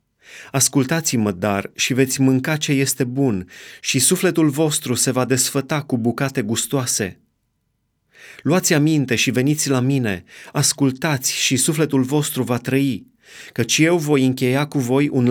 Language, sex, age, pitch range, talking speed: Romanian, male, 30-49, 120-150 Hz, 140 wpm